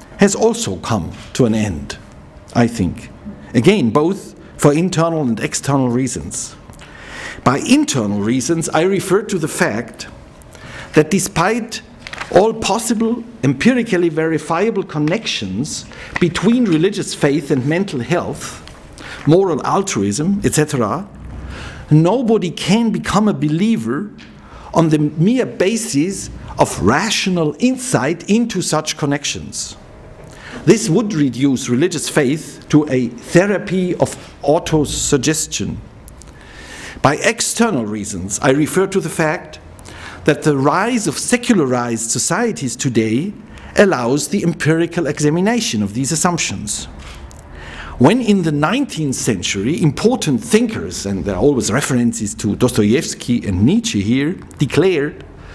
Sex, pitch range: male, 120-190 Hz